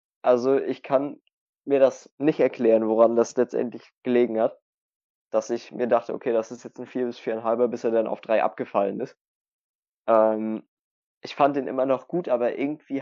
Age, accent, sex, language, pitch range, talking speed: 20-39, German, male, German, 120-135 Hz, 185 wpm